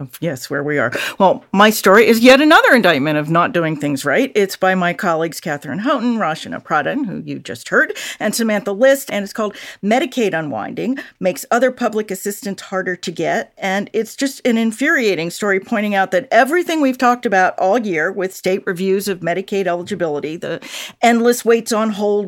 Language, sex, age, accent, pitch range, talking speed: English, female, 50-69, American, 185-240 Hz, 185 wpm